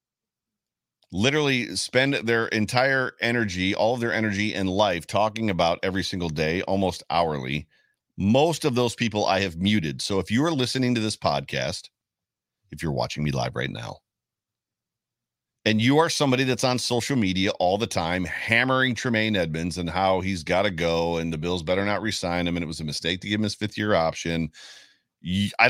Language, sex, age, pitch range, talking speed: English, male, 40-59, 90-120 Hz, 185 wpm